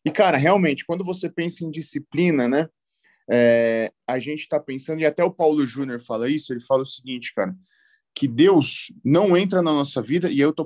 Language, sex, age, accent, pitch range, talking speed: Portuguese, male, 20-39, Brazilian, 140-185 Hz, 205 wpm